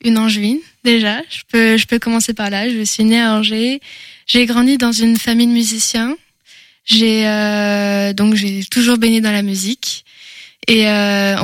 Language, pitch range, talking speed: French, 215-240 Hz, 175 wpm